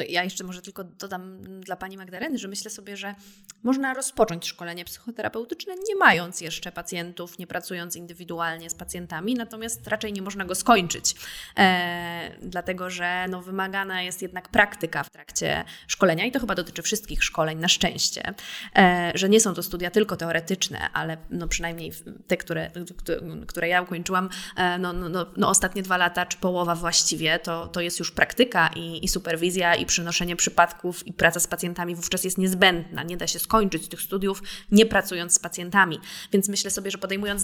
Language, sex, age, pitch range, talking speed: Polish, female, 20-39, 175-210 Hz, 175 wpm